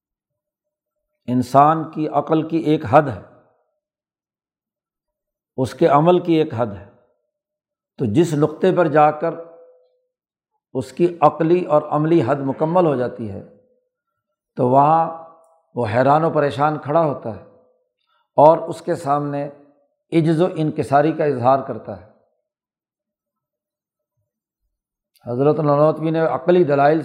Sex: male